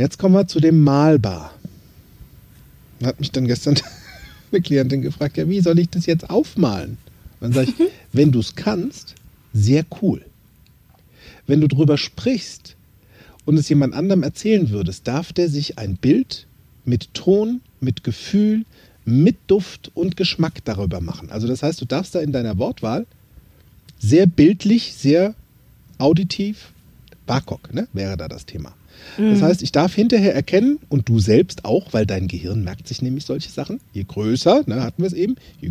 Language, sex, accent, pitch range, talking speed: German, male, German, 105-175 Hz, 165 wpm